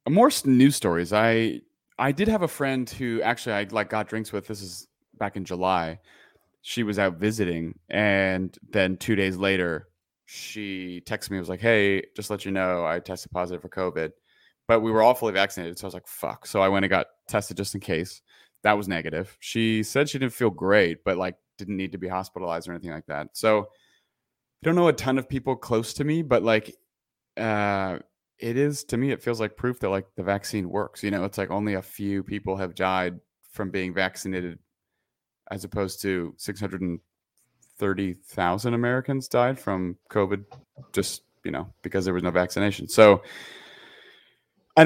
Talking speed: 195 wpm